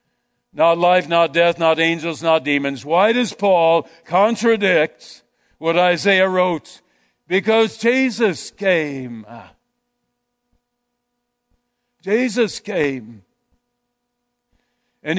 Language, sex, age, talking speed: English, male, 60-79, 85 wpm